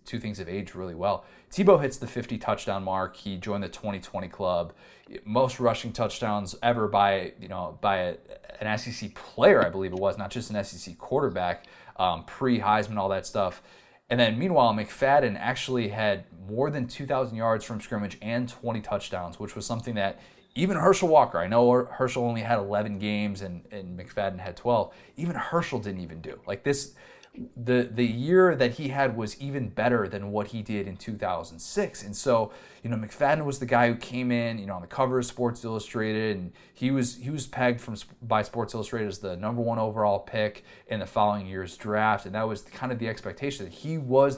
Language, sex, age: English, male, 20-39